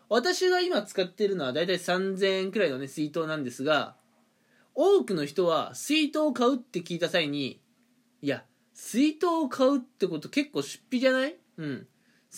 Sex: male